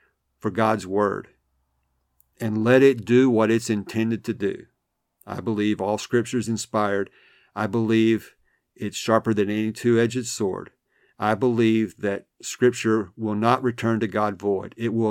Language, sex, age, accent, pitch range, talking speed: English, male, 50-69, American, 105-120 Hz, 150 wpm